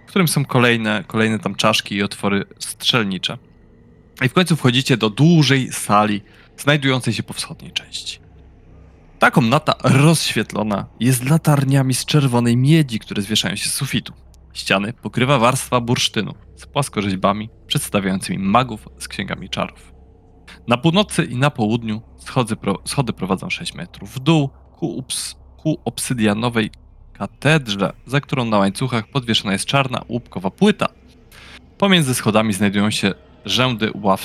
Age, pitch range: 20-39, 100-130 Hz